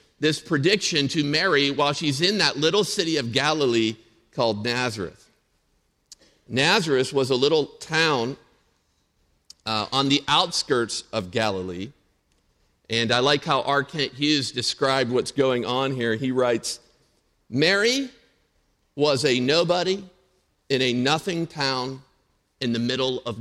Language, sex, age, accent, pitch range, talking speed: English, male, 50-69, American, 115-155 Hz, 130 wpm